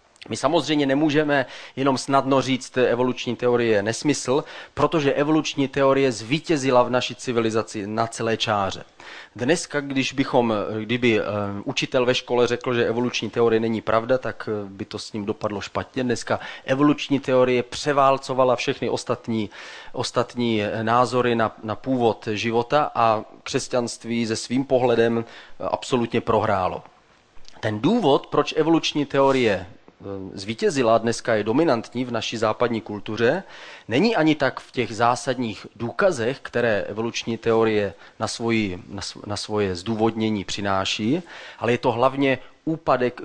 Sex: male